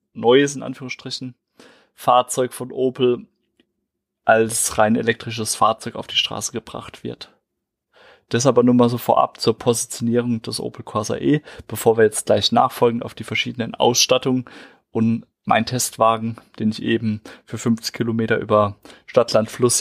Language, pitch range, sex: German, 110-130 Hz, male